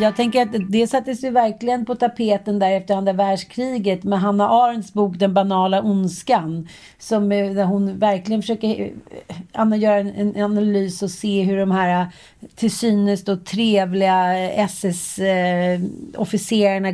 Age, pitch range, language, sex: 40-59, 185-215 Hz, Swedish, female